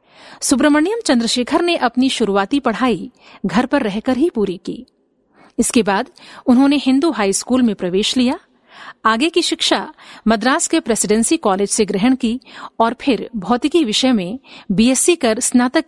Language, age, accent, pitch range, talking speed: Hindi, 50-69, native, 215-275 Hz, 145 wpm